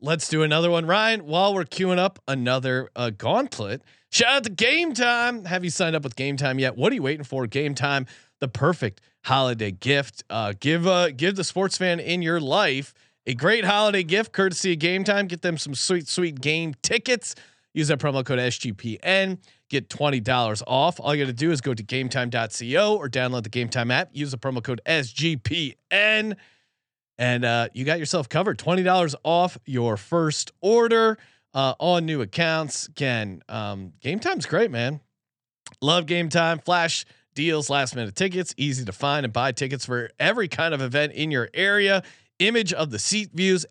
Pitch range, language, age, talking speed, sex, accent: 130-175 Hz, English, 30-49, 190 wpm, male, American